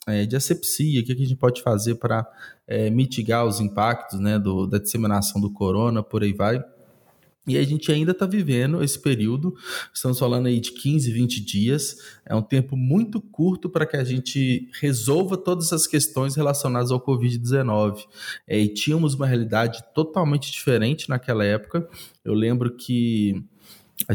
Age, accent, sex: 20-39, Brazilian, male